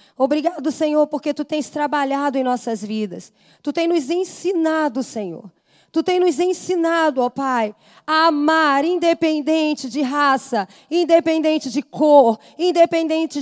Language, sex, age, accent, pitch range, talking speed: Portuguese, female, 20-39, Brazilian, 280-335 Hz, 130 wpm